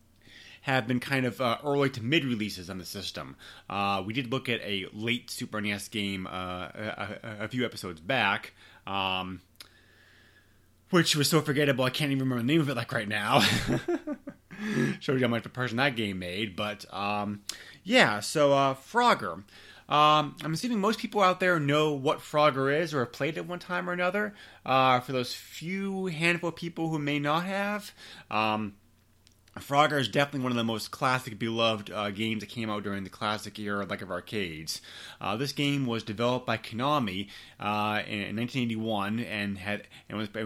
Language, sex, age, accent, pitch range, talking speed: English, male, 30-49, American, 105-150 Hz, 190 wpm